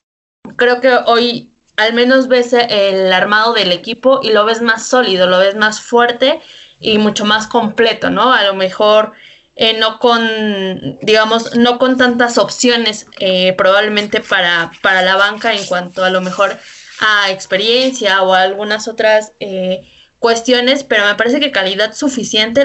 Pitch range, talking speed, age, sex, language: 200-245 Hz, 160 wpm, 20-39, female, Spanish